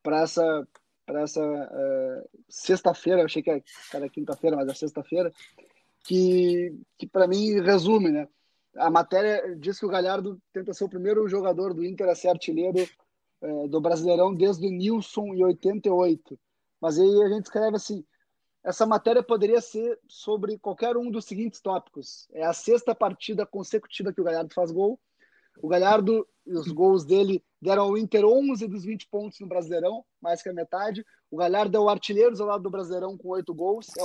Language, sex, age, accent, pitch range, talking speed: Portuguese, male, 20-39, Brazilian, 180-215 Hz, 180 wpm